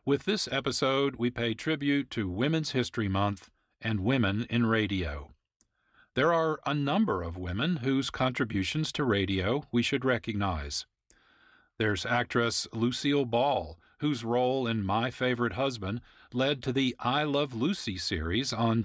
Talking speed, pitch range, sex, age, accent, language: 145 wpm, 105-140 Hz, male, 50-69, American, English